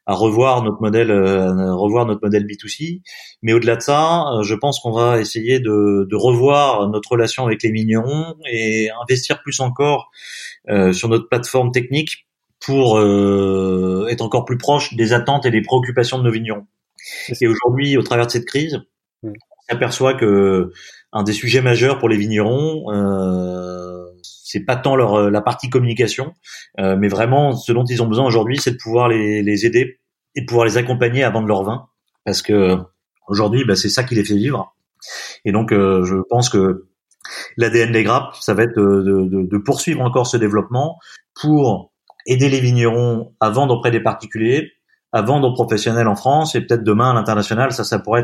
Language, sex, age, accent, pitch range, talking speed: French, male, 30-49, French, 105-125 Hz, 185 wpm